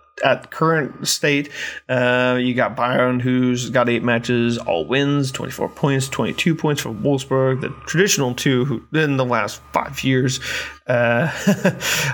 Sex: male